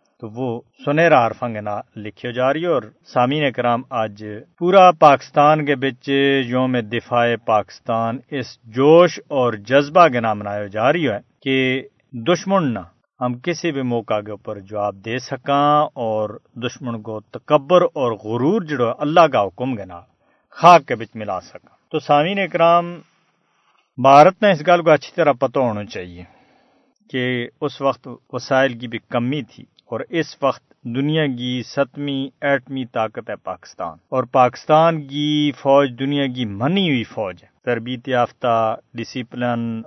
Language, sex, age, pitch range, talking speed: Urdu, male, 50-69, 115-145 Hz, 155 wpm